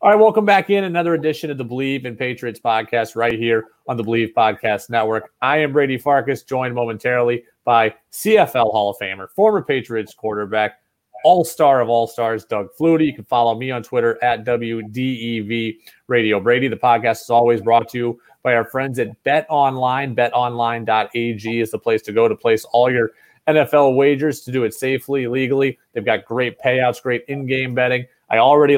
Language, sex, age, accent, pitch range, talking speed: English, male, 30-49, American, 115-135 Hz, 185 wpm